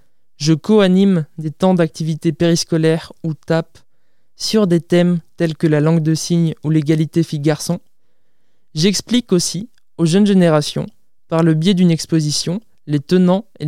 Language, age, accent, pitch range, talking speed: French, 20-39, French, 155-185 Hz, 145 wpm